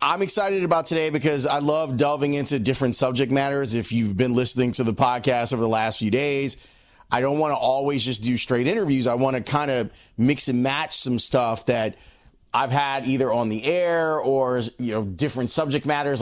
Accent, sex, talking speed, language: American, male, 205 wpm, English